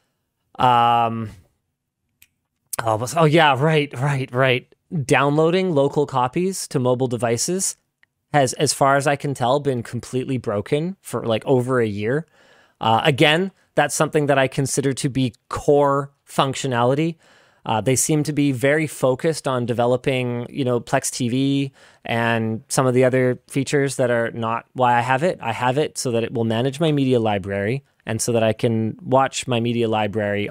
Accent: American